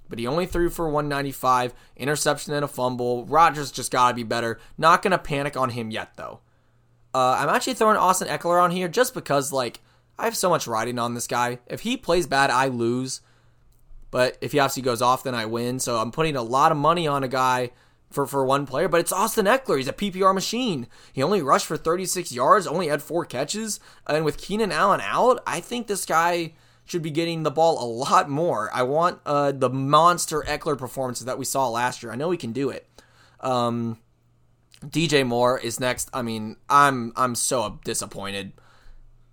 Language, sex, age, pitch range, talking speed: English, male, 20-39, 120-160 Hz, 205 wpm